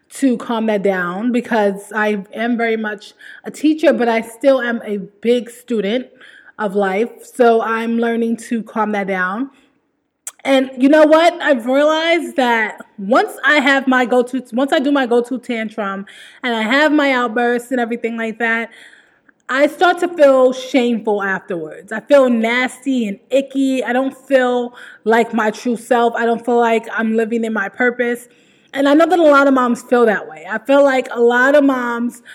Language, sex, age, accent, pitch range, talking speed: English, female, 20-39, American, 230-270 Hz, 185 wpm